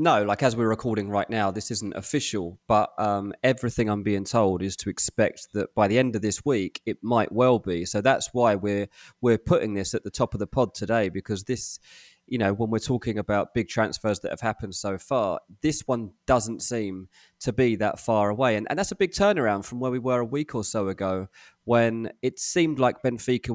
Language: English